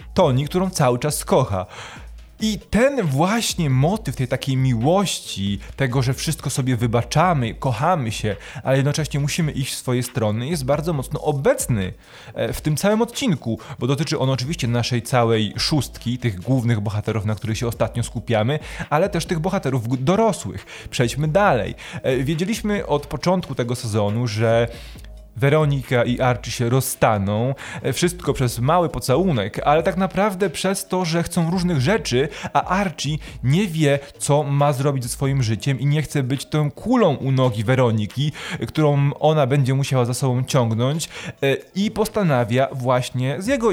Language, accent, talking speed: Polish, native, 150 wpm